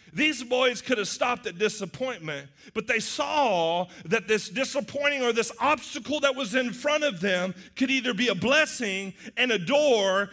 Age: 40-59